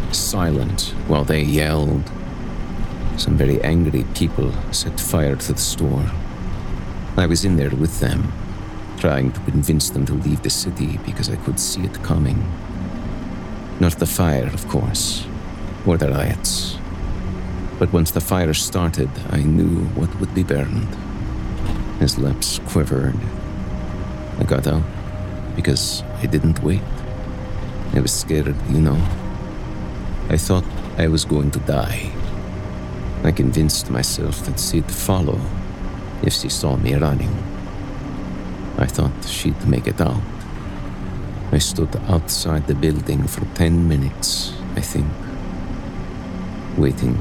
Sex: male